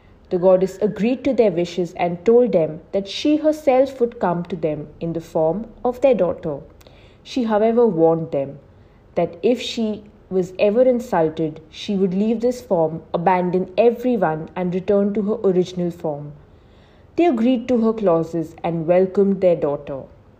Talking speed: 160 wpm